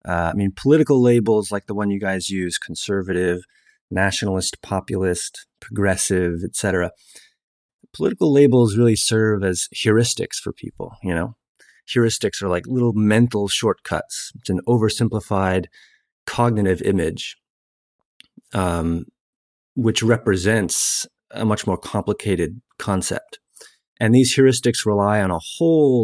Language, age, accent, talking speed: English, 30-49, American, 115 wpm